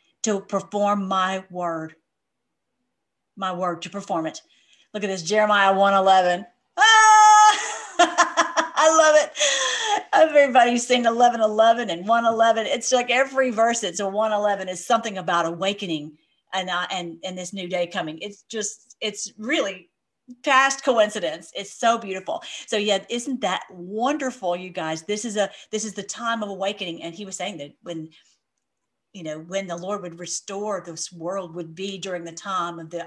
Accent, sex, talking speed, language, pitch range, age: American, female, 165 wpm, English, 170-220 Hz, 40-59